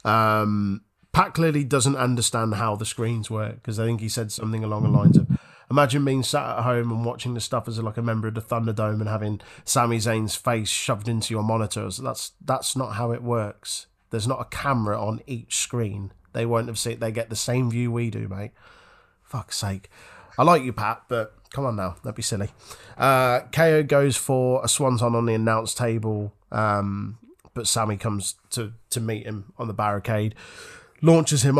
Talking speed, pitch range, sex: 205 wpm, 110-125 Hz, male